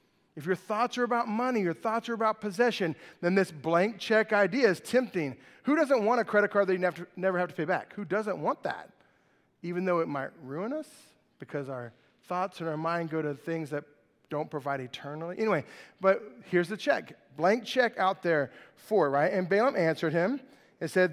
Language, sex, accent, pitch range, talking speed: English, male, American, 170-235 Hz, 205 wpm